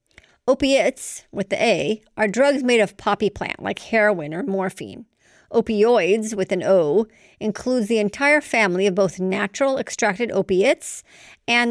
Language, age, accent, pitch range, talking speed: English, 50-69, American, 195-240 Hz, 145 wpm